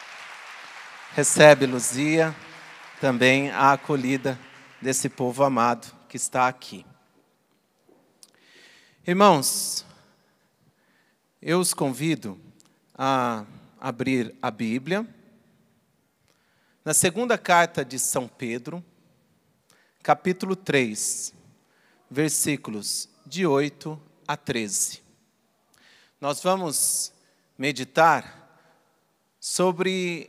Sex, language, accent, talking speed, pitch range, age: male, Portuguese, Brazilian, 70 wpm, 135-190 Hz, 40-59